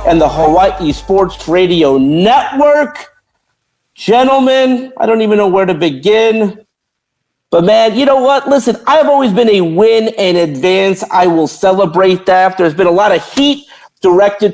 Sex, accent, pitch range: male, American, 170-235 Hz